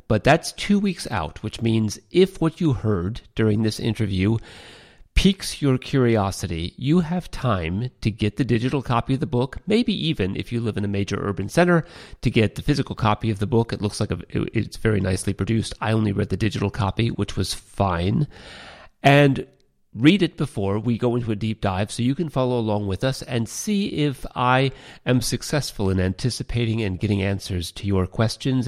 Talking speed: 195 wpm